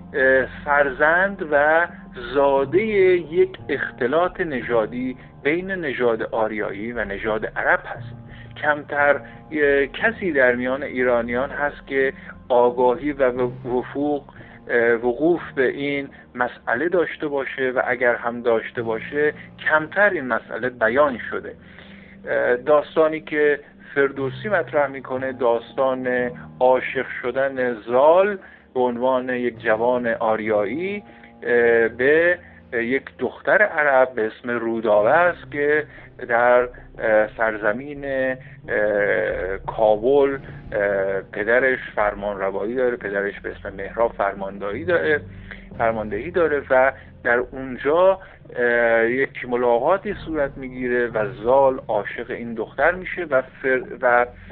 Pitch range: 115-145 Hz